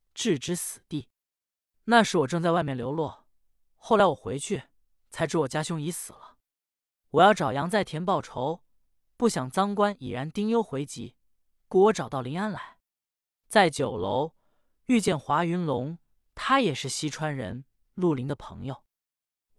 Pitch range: 145-195 Hz